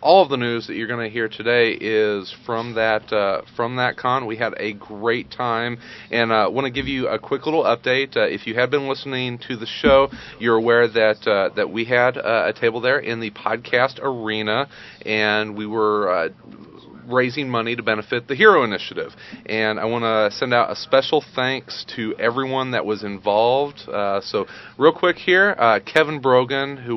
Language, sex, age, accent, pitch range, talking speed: English, male, 40-59, American, 110-130 Hz, 200 wpm